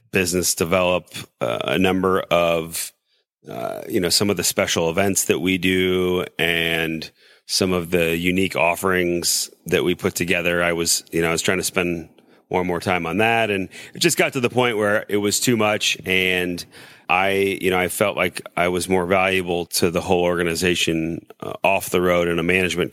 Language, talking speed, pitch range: English, 200 wpm, 85-100 Hz